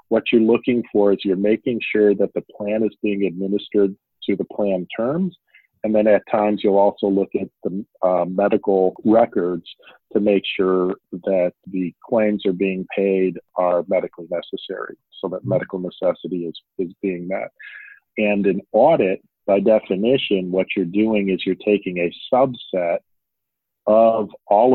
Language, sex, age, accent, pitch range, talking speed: English, male, 40-59, American, 95-105 Hz, 160 wpm